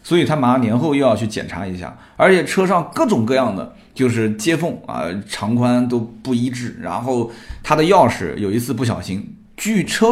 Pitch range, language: 105-135 Hz, Chinese